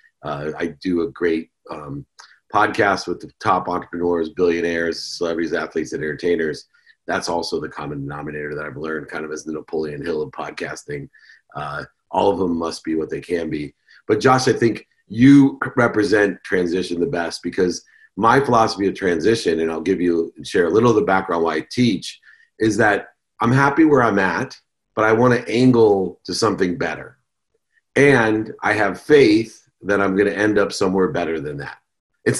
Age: 40-59